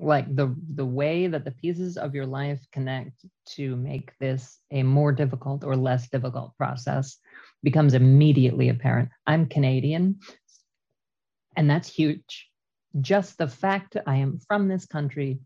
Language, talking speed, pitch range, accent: English, 150 wpm, 130-150 Hz, American